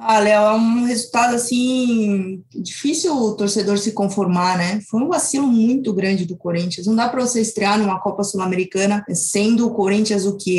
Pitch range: 200-250 Hz